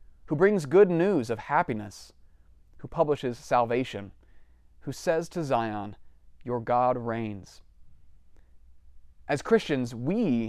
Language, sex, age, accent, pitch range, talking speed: English, male, 30-49, American, 95-155 Hz, 110 wpm